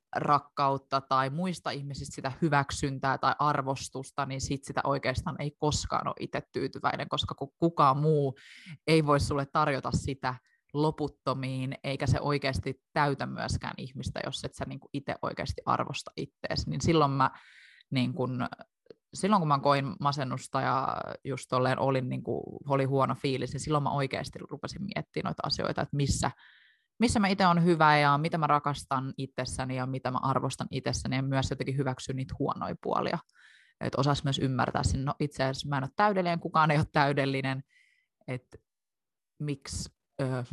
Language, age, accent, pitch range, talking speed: Finnish, 20-39, native, 130-150 Hz, 155 wpm